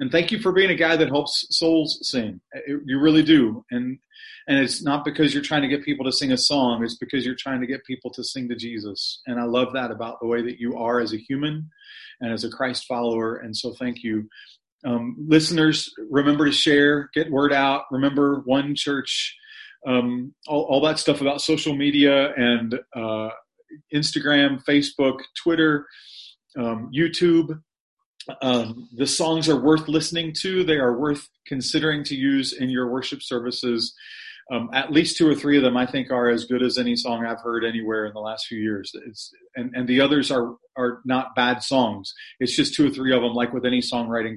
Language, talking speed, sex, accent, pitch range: English, 200 wpm, male, American, 120-150 Hz